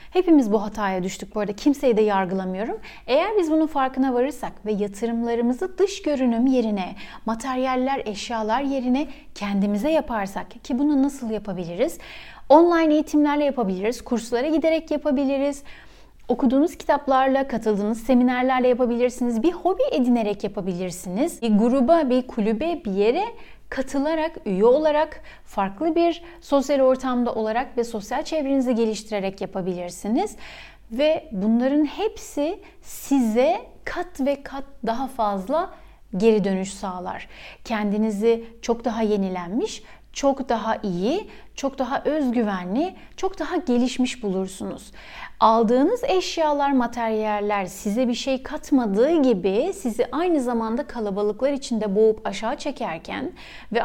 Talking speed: 115 wpm